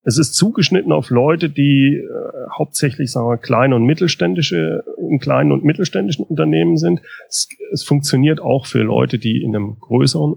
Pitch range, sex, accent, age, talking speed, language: 115-140 Hz, male, German, 30-49, 170 wpm, German